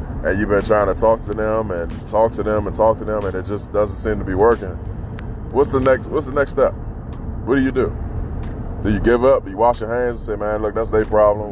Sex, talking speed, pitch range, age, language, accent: male, 265 wpm, 100-110 Hz, 20-39, English, American